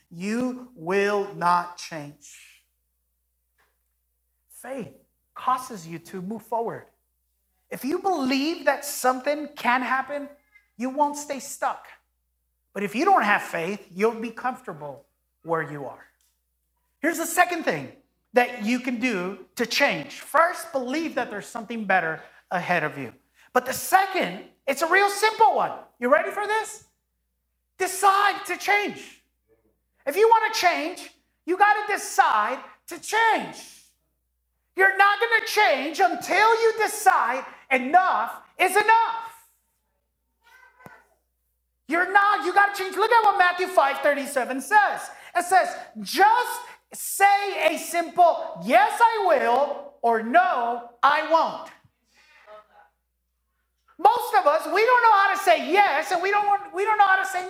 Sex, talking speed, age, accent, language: male, 140 wpm, 30-49, American, English